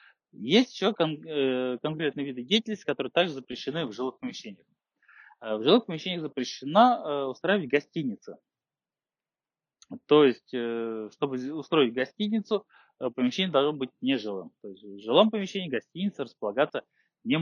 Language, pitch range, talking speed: Russian, 125-190 Hz, 115 wpm